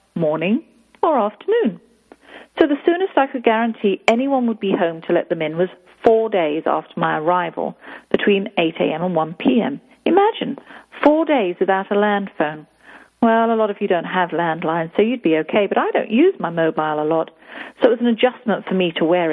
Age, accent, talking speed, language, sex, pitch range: 40-59, British, 200 wpm, English, female, 180-265 Hz